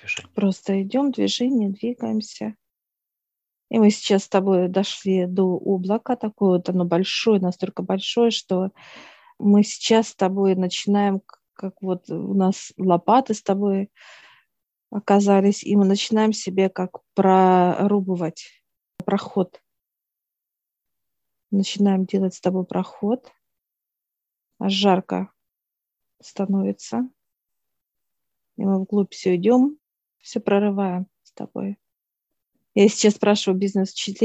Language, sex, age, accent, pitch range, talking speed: Russian, female, 40-59, native, 185-210 Hz, 105 wpm